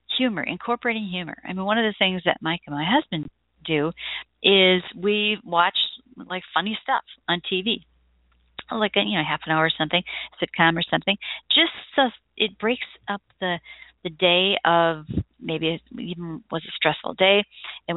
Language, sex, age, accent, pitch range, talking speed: English, female, 50-69, American, 160-235 Hz, 165 wpm